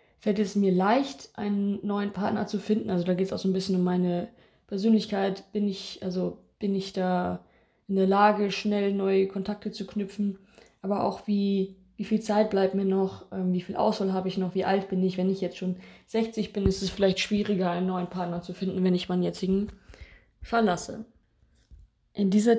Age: 20-39